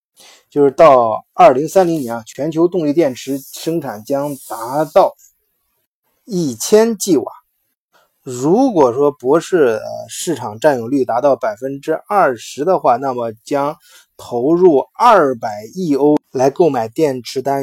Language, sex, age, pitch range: Chinese, male, 20-39, 125-180 Hz